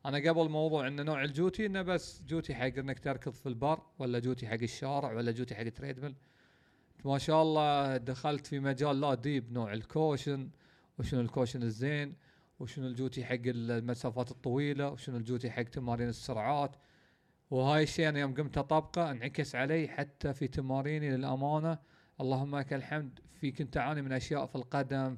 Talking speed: 160 wpm